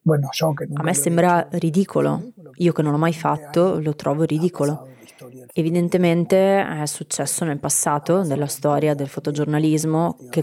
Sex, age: female, 20-39